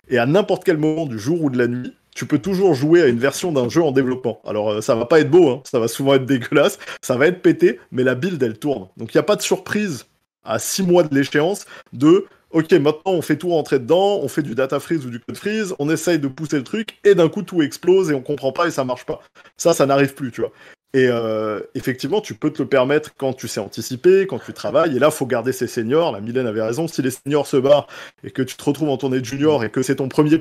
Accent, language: French, French